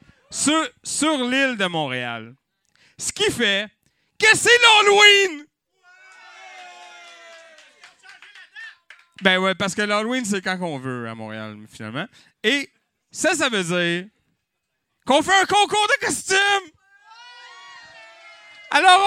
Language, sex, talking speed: French, male, 110 wpm